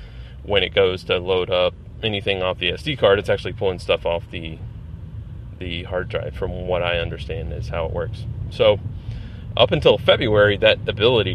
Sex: male